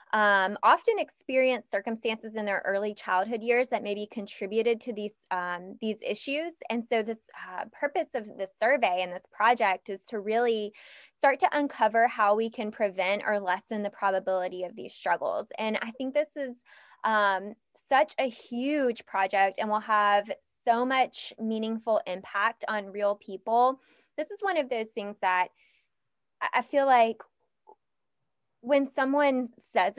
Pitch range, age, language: 190-240 Hz, 20-39, English